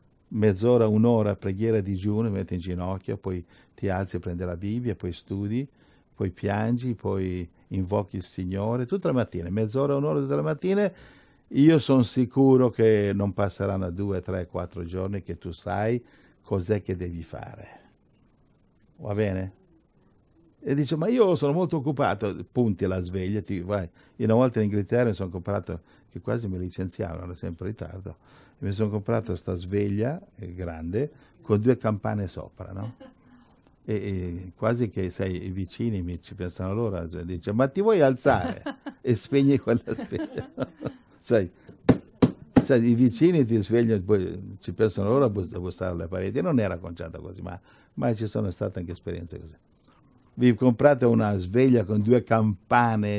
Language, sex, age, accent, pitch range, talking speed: Italian, male, 50-69, native, 95-120 Hz, 160 wpm